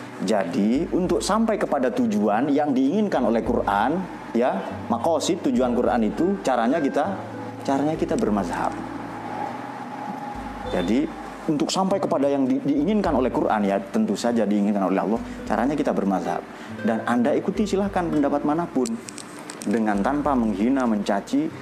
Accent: native